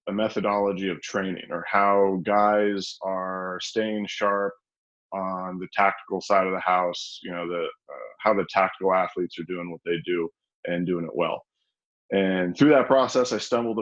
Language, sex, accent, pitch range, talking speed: English, male, American, 95-110 Hz, 170 wpm